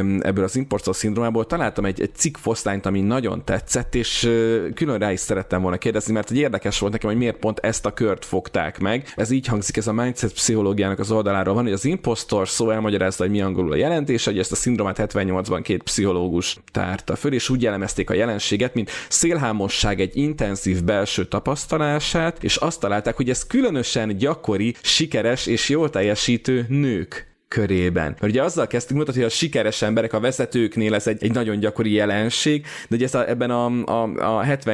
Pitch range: 100-125 Hz